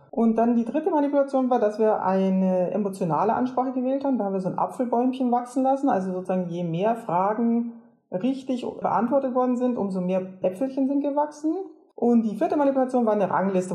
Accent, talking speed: German, 185 wpm